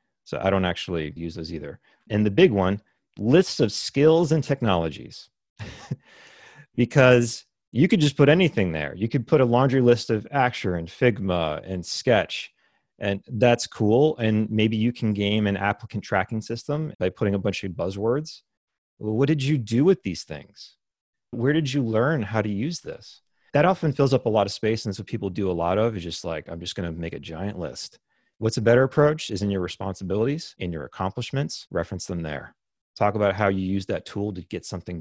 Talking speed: 200 wpm